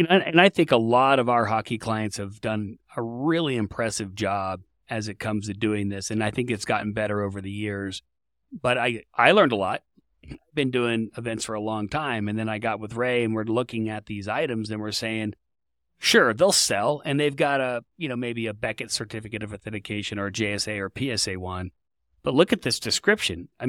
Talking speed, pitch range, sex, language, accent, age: 215 wpm, 105-130 Hz, male, English, American, 30-49